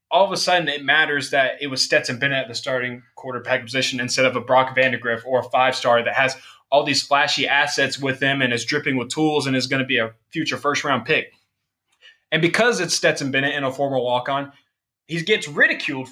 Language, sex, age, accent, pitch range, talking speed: English, male, 20-39, American, 130-165 Hz, 215 wpm